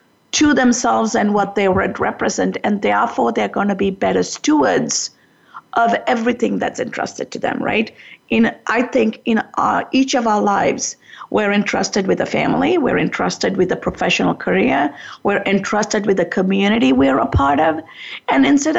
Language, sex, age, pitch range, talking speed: English, female, 50-69, 215-265 Hz, 165 wpm